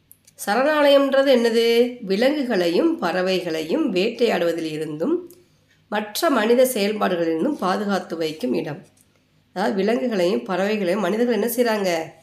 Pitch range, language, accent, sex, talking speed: 180-255 Hz, Tamil, native, female, 90 wpm